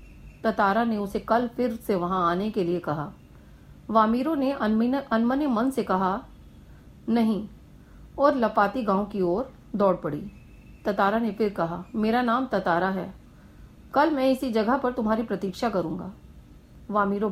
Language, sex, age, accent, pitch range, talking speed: Hindi, female, 40-59, native, 185-230 Hz, 145 wpm